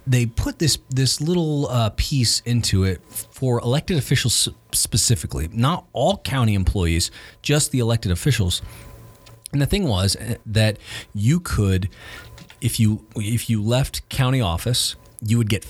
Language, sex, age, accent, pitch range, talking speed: English, male, 40-59, American, 95-125 Hz, 145 wpm